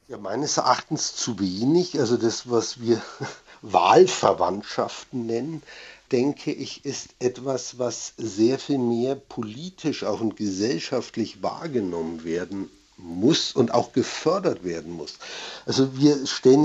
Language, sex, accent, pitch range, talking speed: German, male, German, 120-145 Hz, 125 wpm